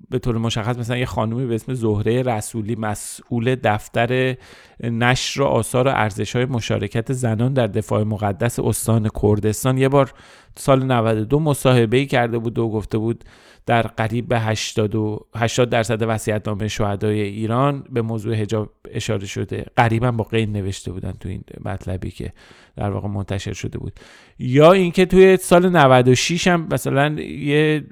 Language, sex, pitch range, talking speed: Persian, male, 110-130 Hz, 155 wpm